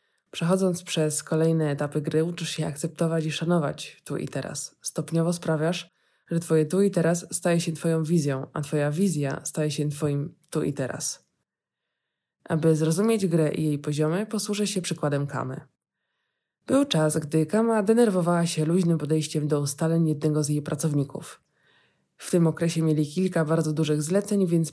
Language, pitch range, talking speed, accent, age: Polish, 150-175 Hz, 160 wpm, native, 20-39